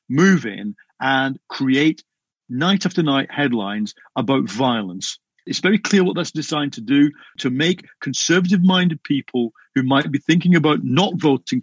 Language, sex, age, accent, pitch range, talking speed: English, male, 50-69, British, 135-195 Hz, 140 wpm